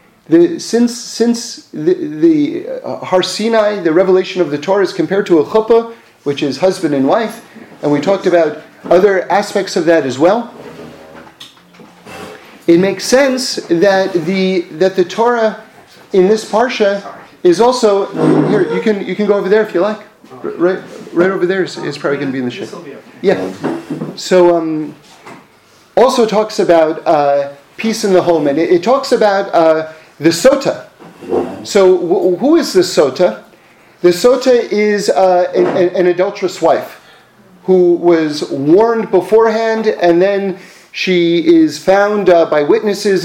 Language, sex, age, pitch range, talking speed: English, male, 40-59, 170-220 Hz, 160 wpm